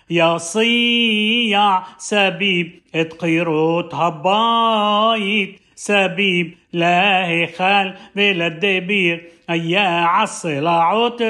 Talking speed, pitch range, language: 65 wpm, 180-220 Hz, Hebrew